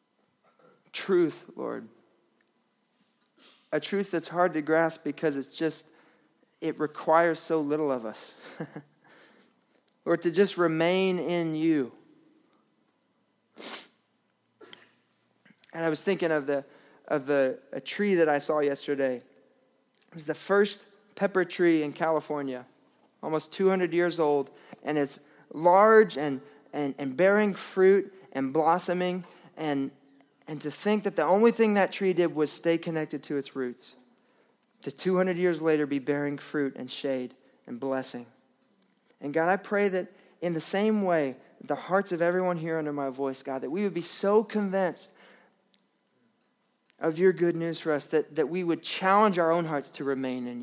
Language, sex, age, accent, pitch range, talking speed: English, male, 20-39, American, 150-195 Hz, 150 wpm